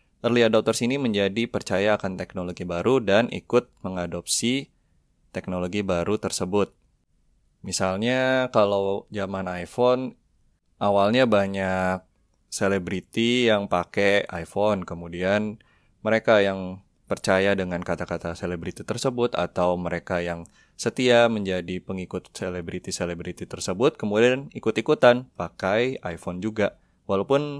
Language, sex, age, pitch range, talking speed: Indonesian, male, 20-39, 95-115 Hz, 100 wpm